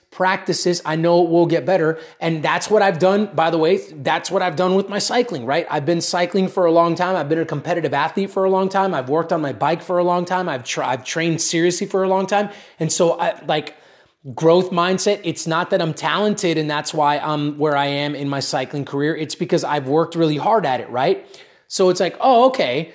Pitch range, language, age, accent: 155-195 Hz, English, 20-39, American